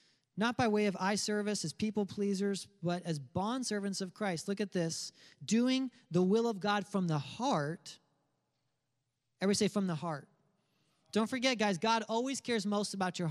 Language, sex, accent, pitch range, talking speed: English, male, American, 150-210 Hz, 180 wpm